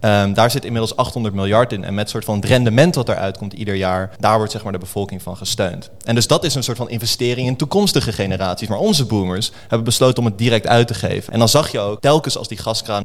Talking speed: 260 wpm